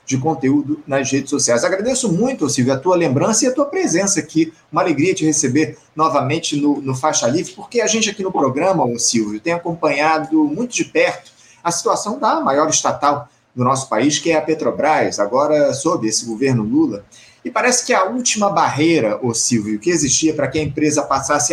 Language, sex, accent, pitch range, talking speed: Portuguese, male, Brazilian, 140-190 Hz, 190 wpm